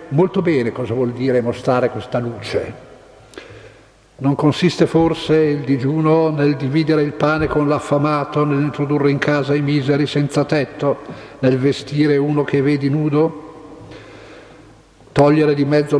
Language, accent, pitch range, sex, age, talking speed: Italian, native, 140-155 Hz, male, 50-69, 130 wpm